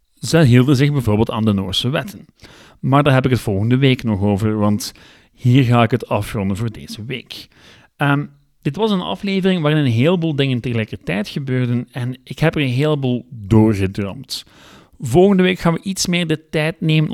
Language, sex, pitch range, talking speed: Dutch, male, 115-160 Hz, 185 wpm